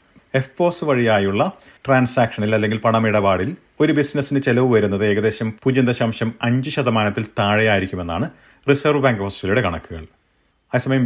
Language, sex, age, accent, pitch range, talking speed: Malayalam, male, 40-59, native, 105-140 Hz, 110 wpm